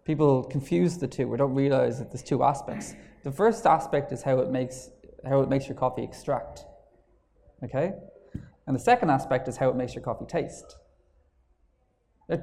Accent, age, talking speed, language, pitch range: Irish, 20-39, 180 wpm, English, 125-155 Hz